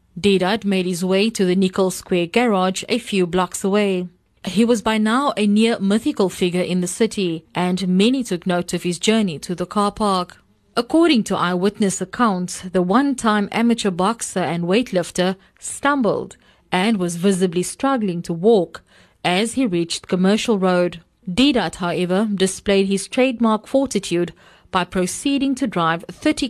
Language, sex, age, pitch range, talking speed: English, female, 30-49, 180-225 Hz, 150 wpm